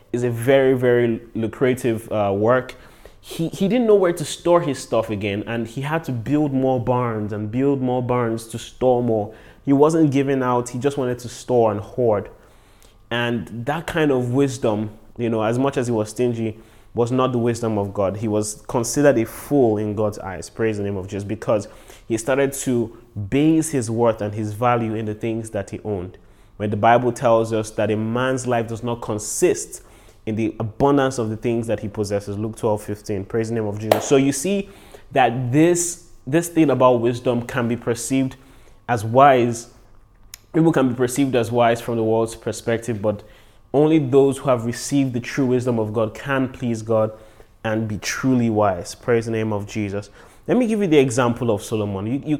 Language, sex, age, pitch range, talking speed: English, male, 20-39, 110-130 Hz, 200 wpm